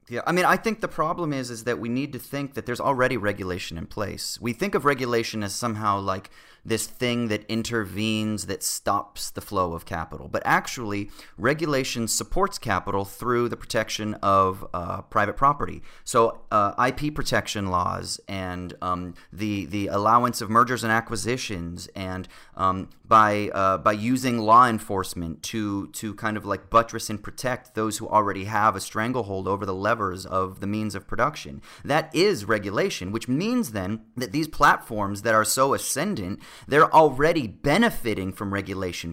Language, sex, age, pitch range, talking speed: English, male, 30-49, 100-120 Hz, 170 wpm